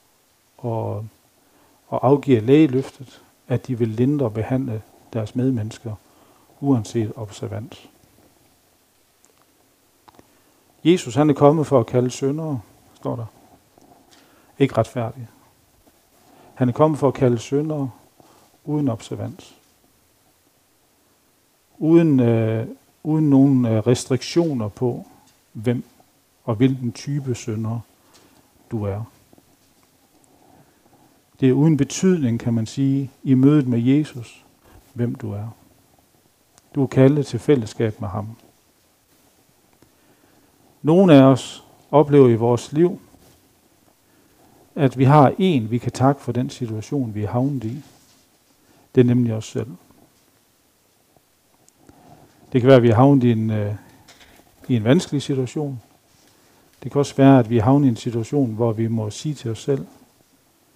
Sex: male